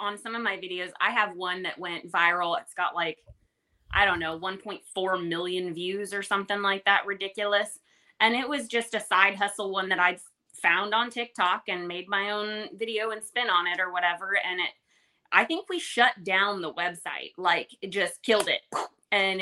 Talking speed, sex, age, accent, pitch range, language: 200 wpm, female, 20-39, American, 180-230 Hz, English